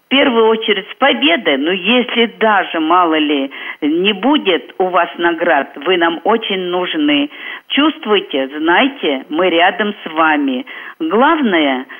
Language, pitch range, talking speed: Russian, 165-225 Hz, 130 wpm